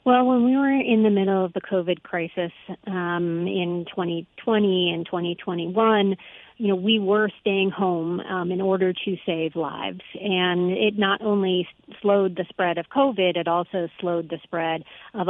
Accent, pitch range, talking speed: American, 170-200 Hz, 165 wpm